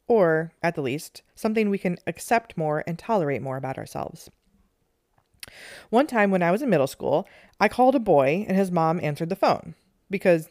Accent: American